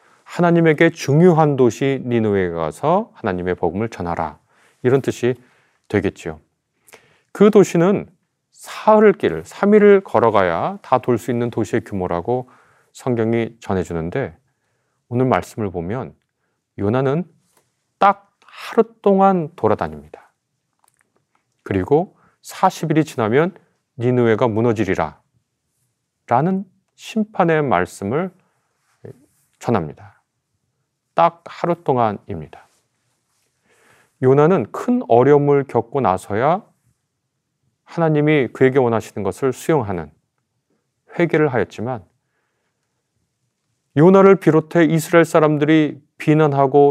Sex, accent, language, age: male, native, Korean, 30-49